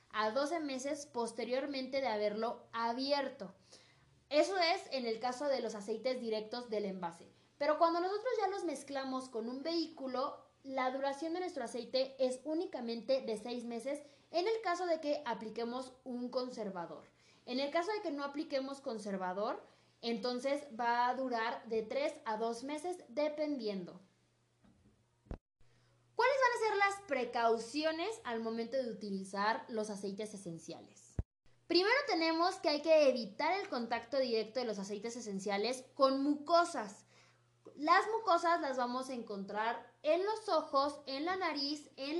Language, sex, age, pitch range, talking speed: Spanish, female, 20-39, 230-300 Hz, 140 wpm